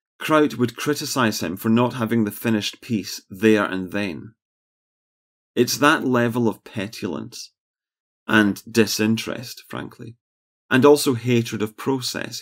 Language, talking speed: English, 125 wpm